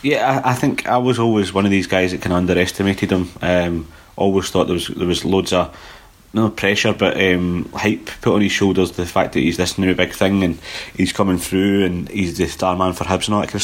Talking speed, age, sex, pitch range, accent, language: 250 wpm, 30-49, male, 85-100 Hz, British, English